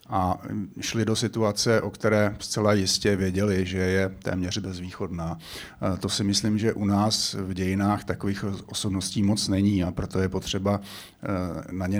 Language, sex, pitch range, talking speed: Slovak, male, 100-115 Hz, 155 wpm